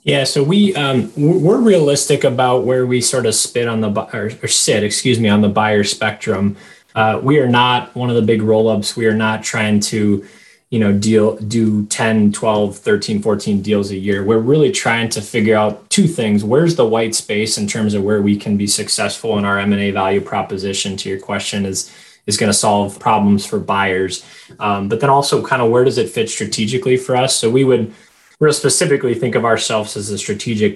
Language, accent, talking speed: English, American, 215 wpm